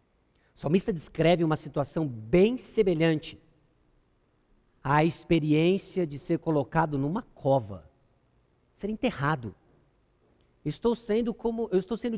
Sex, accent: male, Brazilian